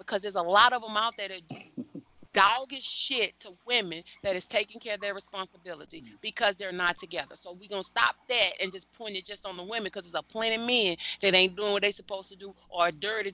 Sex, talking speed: female, 250 wpm